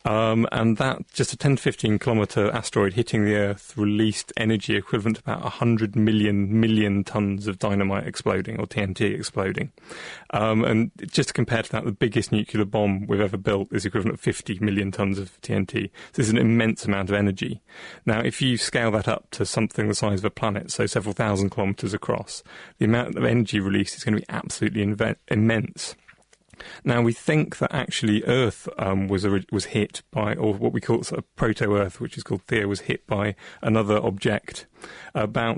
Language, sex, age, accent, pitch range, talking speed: English, male, 30-49, British, 100-115 Hz, 195 wpm